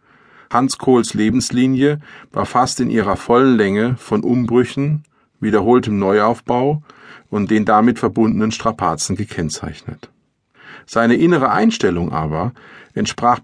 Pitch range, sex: 105-135 Hz, male